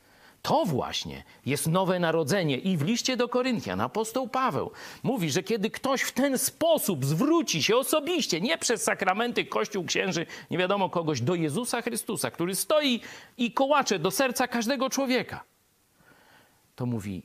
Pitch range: 155-250 Hz